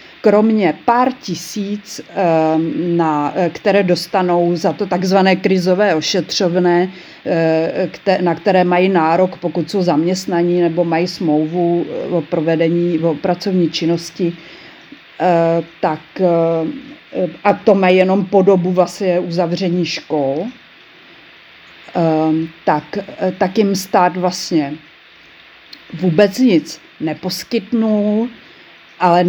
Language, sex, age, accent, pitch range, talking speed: Czech, female, 40-59, native, 170-210 Hz, 85 wpm